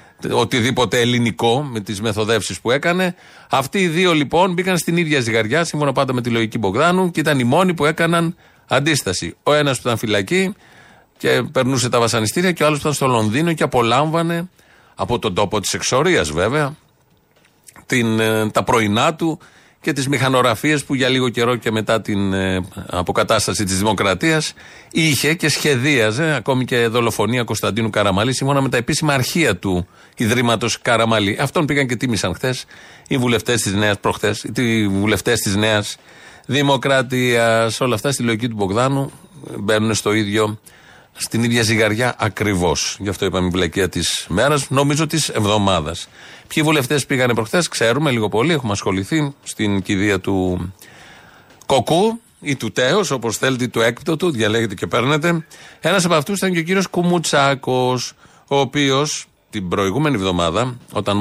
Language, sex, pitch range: Greek, male, 110-150 Hz